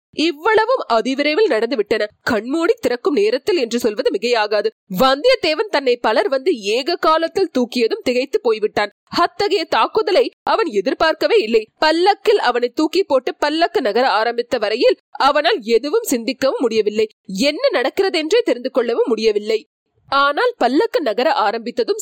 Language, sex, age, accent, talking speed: Tamil, female, 30-49, native, 125 wpm